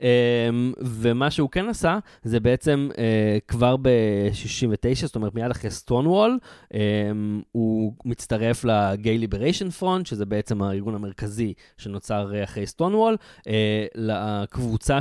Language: Hebrew